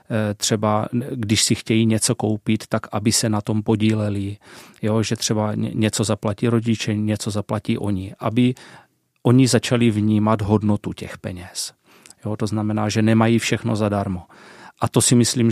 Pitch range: 105-115 Hz